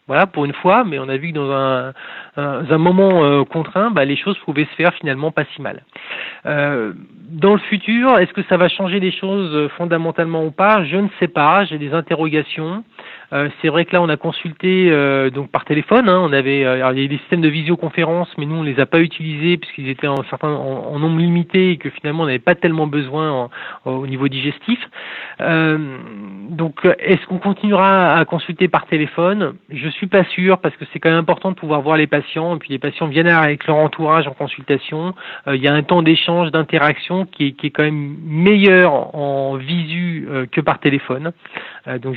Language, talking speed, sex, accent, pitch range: French, 220 wpm, male, French, 145-180 Hz